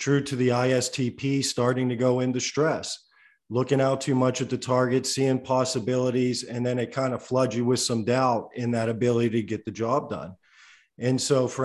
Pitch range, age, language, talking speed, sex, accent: 115-130 Hz, 40-59, English, 200 wpm, male, American